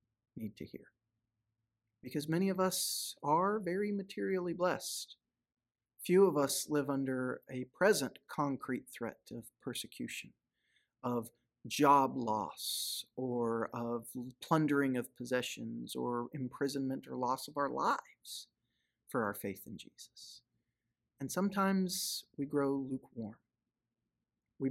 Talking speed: 115 wpm